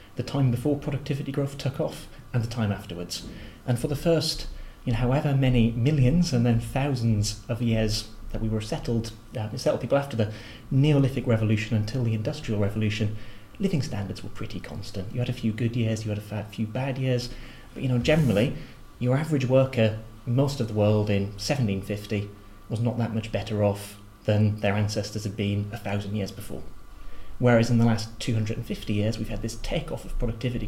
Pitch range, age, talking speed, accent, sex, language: 105-125 Hz, 30-49, 190 wpm, British, male, English